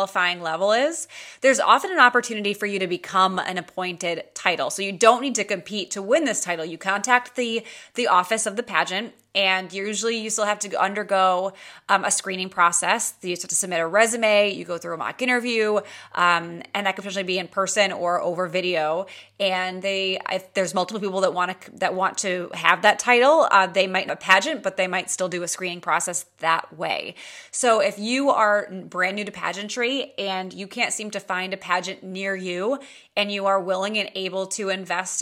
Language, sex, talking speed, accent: English, female, 210 wpm, American